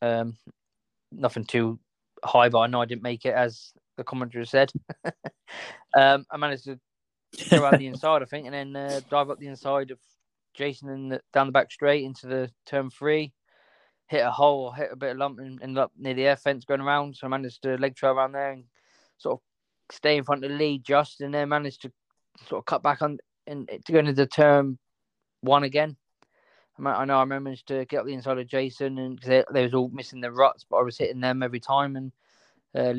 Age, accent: 20-39, British